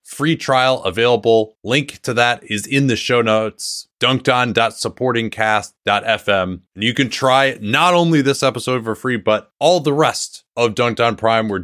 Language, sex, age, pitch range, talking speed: English, male, 30-49, 115-140 Hz, 155 wpm